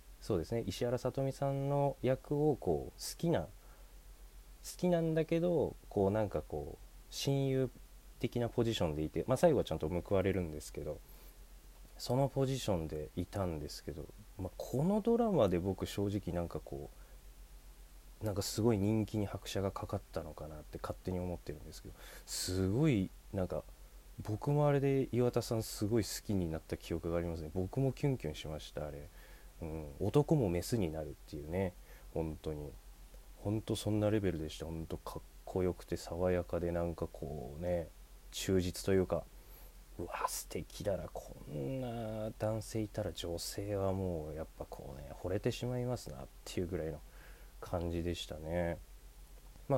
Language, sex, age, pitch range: Japanese, male, 20-39, 80-115 Hz